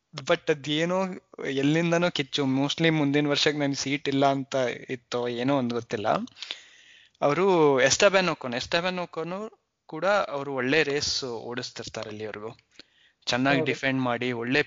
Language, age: Kannada, 20-39